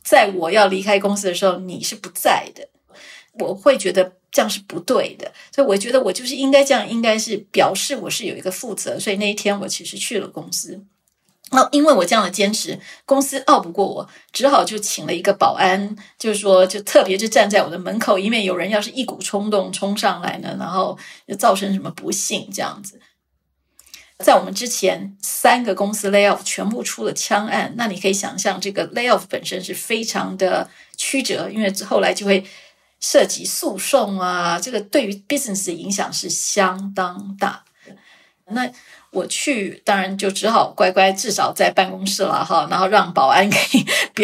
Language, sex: Chinese, female